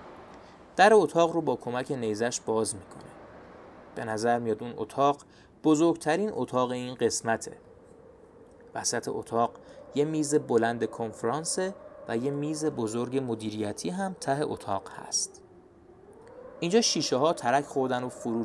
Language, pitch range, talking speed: Persian, 110-160 Hz, 125 wpm